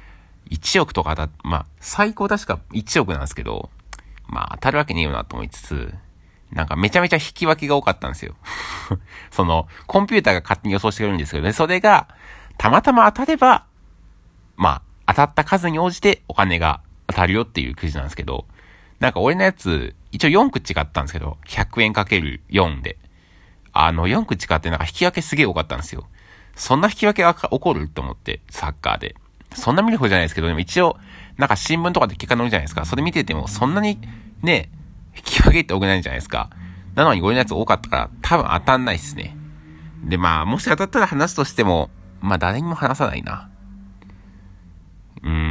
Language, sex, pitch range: Japanese, male, 80-115 Hz